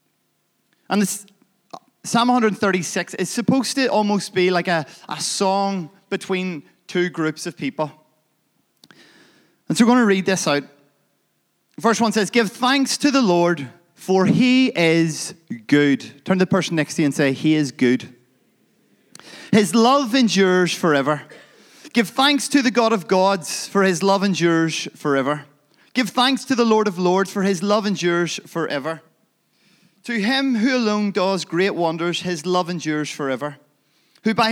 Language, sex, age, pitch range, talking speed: English, male, 30-49, 160-225 Hz, 160 wpm